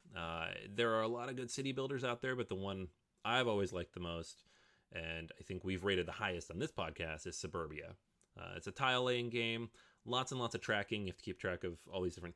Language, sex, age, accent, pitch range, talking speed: English, male, 30-49, American, 90-120 Hz, 245 wpm